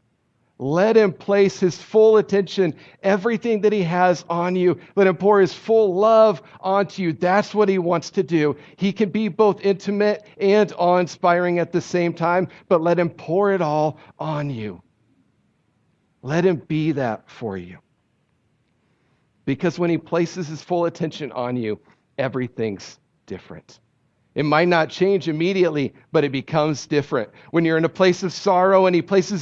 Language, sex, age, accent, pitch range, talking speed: English, male, 50-69, American, 165-200 Hz, 165 wpm